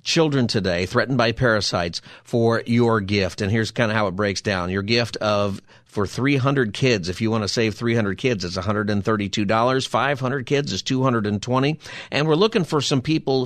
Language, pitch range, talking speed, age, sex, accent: English, 110-135 Hz, 185 wpm, 50-69, male, American